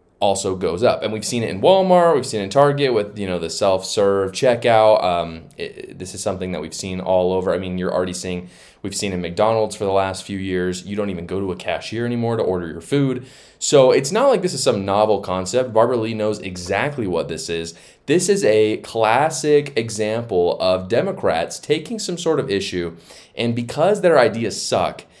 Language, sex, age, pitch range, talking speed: English, male, 20-39, 90-120 Hz, 215 wpm